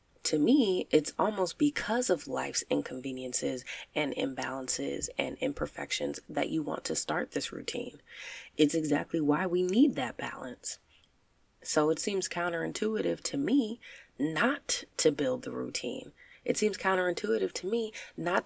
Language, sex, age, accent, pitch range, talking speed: English, female, 20-39, American, 145-195 Hz, 140 wpm